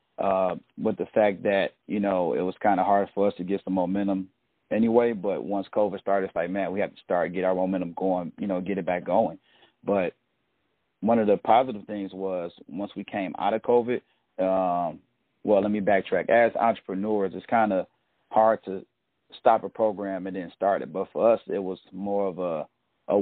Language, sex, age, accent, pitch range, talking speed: English, male, 30-49, American, 95-105 Hz, 210 wpm